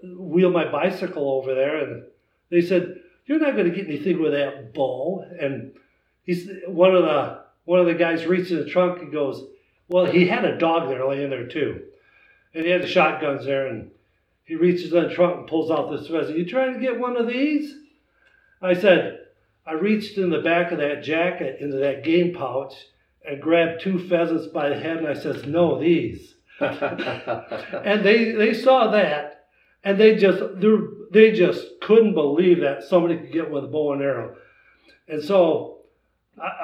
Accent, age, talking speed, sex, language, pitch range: American, 60-79, 185 wpm, male, English, 155-205 Hz